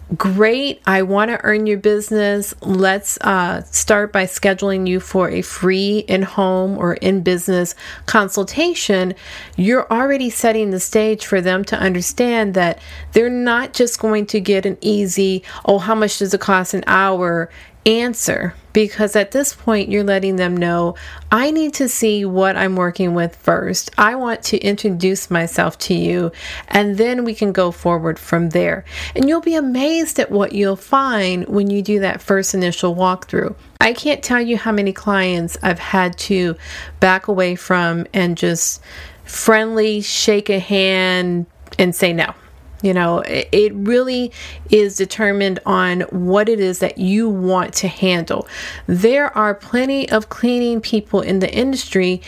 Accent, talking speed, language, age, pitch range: American, 160 wpm, English, 30-49, 185-215 Hz